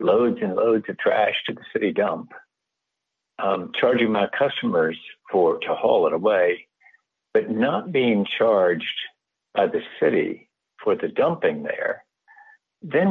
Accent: American